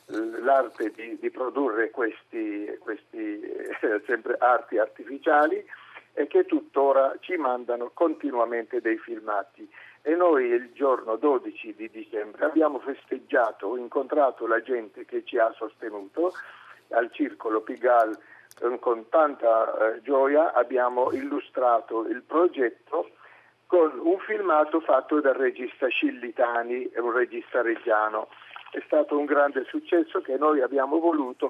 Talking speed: 125 wpm